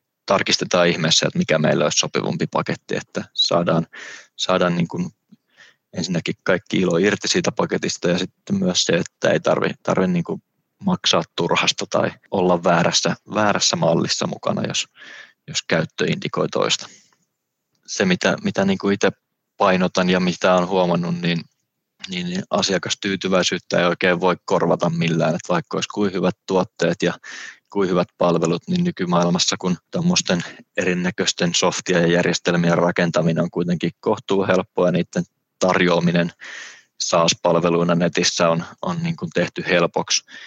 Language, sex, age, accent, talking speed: Finnish, male, 20-39, native, 135 wpm